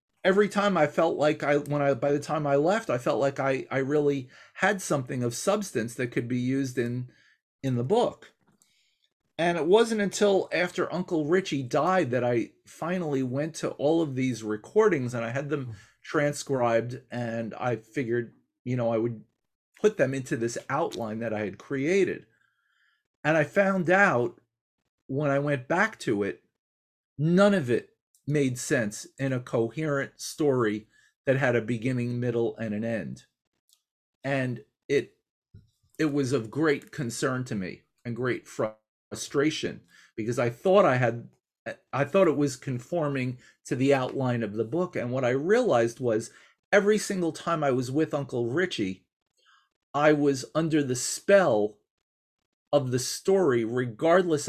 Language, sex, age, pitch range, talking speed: English, male, 40-59, 120-155 Hz, 160 wpm